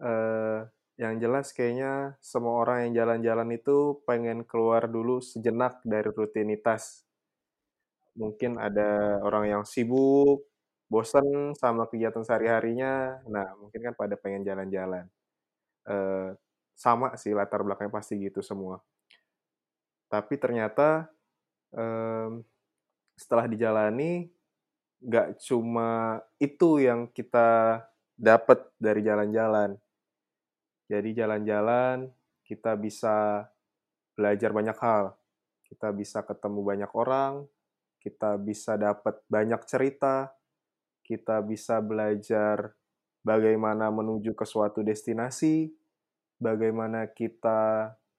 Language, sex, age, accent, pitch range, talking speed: Indonesian, male, 20-39, native, 105-125 Hz, 95 wpm